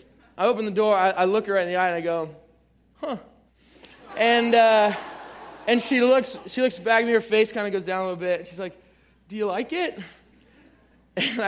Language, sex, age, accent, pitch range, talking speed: English, male, 20-39, American, 195-245 Hz, 215 wpm